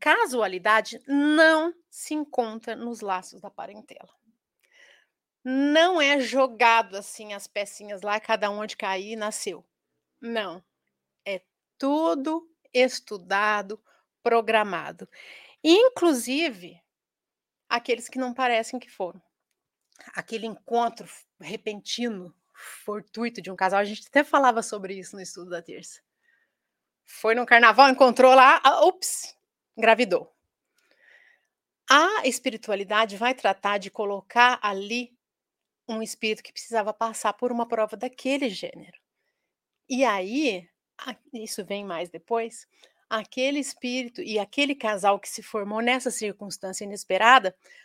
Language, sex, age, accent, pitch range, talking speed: Portuguese, female, 30-49, Brazilian, 210-265 Hz, 115 wpm